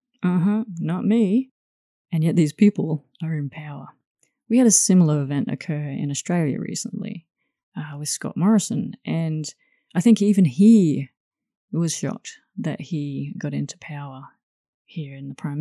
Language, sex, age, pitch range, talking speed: English, female, 30-49, 150-200 Hz, 155 wpm